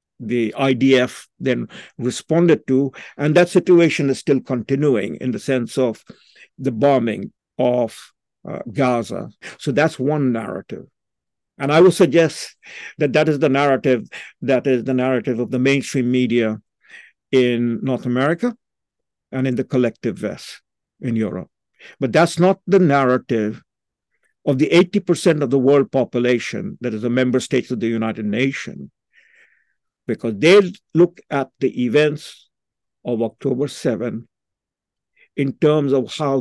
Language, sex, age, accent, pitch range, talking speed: English, male, 50-69, Indian, 125-155 Hz, 140 wpm